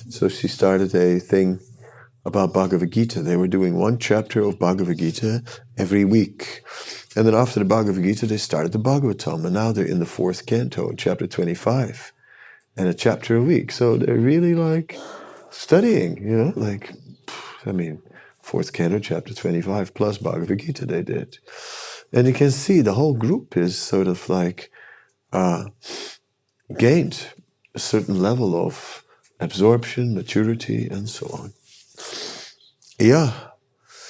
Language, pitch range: English, 100-130 Hz